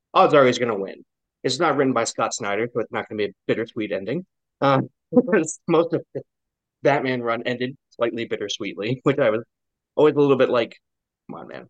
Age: 30-49